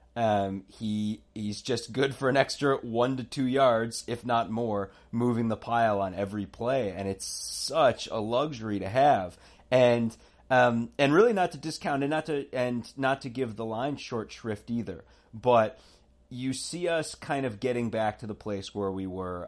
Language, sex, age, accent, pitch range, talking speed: English, male, 30-49, American, 100-120 Hz, 190 wpm